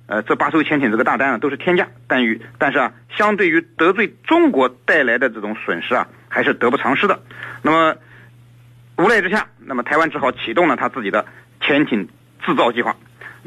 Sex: male